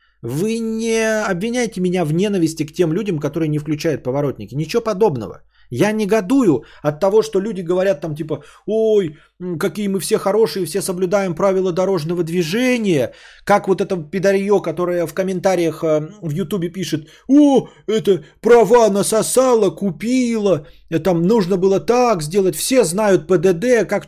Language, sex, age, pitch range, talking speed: Bulgarian, male, 30-49, 155-220 Hz, 145 wpm